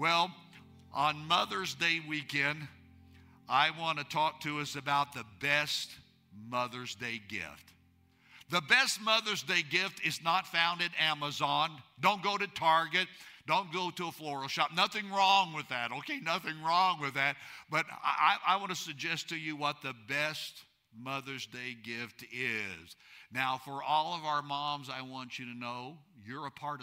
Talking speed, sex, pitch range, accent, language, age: 170 wpm, male, 120-165 Hz, American, English, 60-79